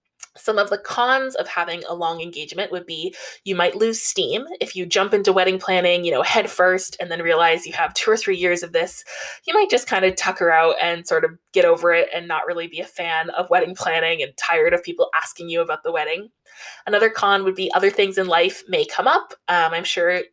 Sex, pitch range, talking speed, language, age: female, 175-250 Hz, 240 wpm, English, 20-39